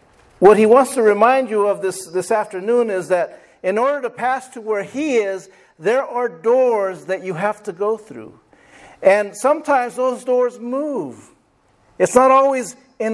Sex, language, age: male, English, 50-69